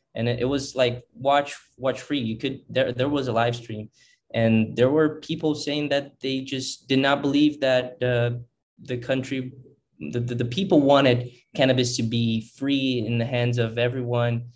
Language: English